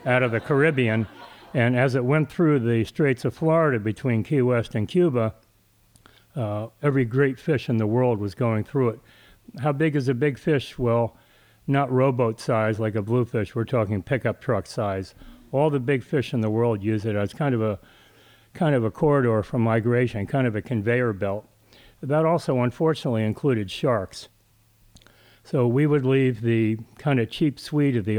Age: 60-79